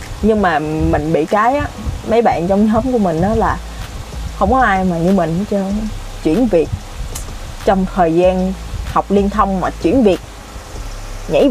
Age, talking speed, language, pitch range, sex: 20-39, 175 wpm, Vietnamese, 165-225 Hz, female